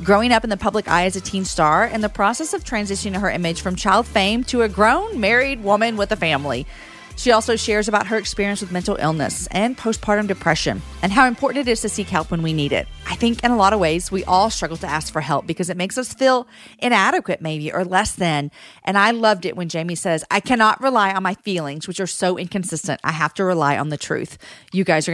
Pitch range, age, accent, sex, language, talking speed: 170-230 Hz, 40-59, American, female, English, 245 wpm